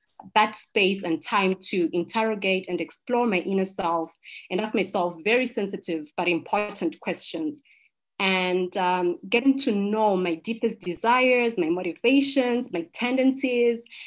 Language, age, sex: English, 20-39, female